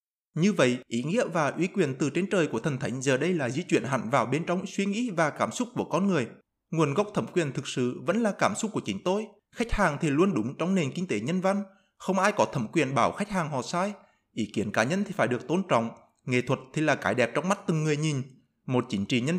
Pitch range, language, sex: 125-195 Hz, Vietnamese, male